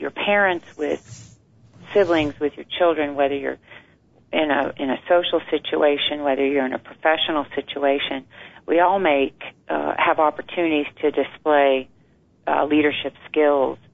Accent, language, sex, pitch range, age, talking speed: American, English, female, 135-155 Hz, 40-59, 140 wpm